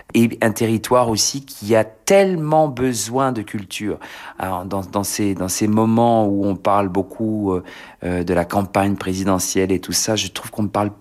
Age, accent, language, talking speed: 40-59, French, French, 180 wpm